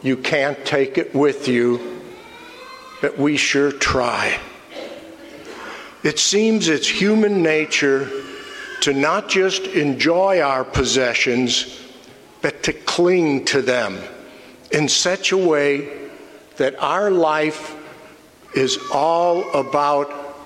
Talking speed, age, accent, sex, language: 105 wpm, 60-79, American, male, English